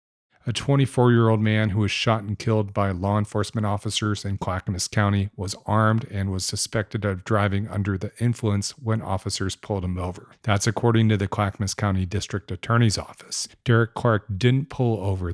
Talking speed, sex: 170 wpm, male